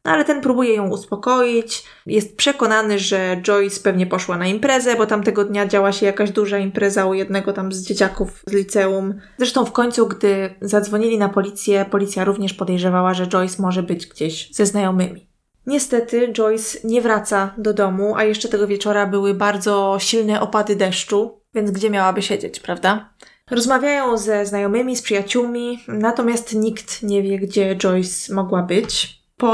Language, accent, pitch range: Polish, native, 200-225 Hz